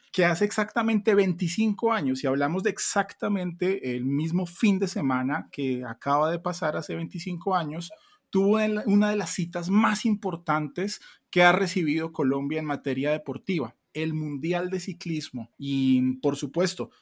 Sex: male